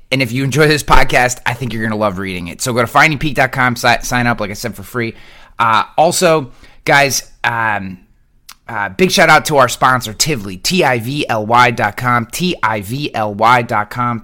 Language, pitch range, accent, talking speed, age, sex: English, 115-145 Hz, American, 165 wpm, 30-49, male